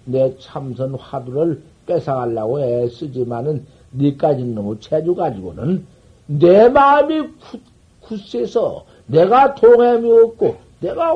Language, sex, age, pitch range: Korean, male, 60-79, 120-190 Hz